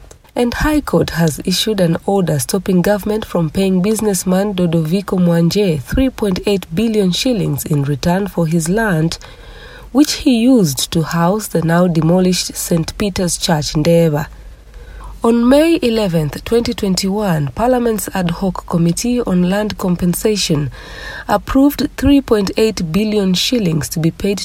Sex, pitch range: female, 165-210 Hz